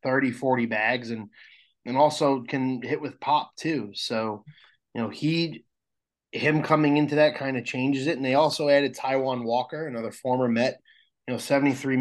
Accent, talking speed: American, 175 wpm